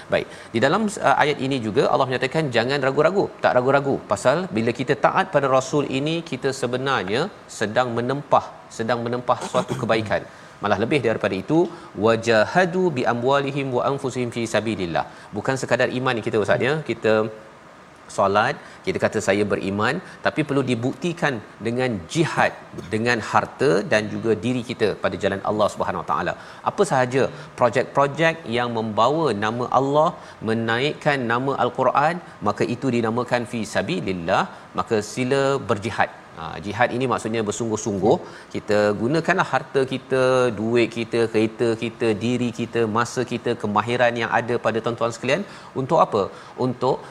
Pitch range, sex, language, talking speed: 115-135 Hz, male, Malayalam, 140 wpm